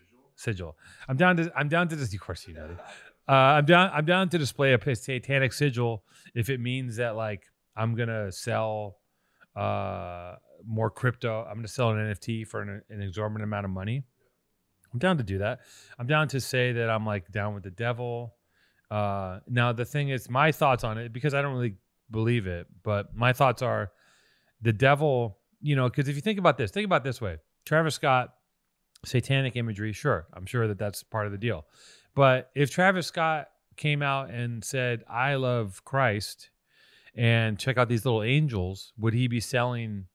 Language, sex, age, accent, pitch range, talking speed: English, male, 30-49, American, 105-135 Hz, 195 wpm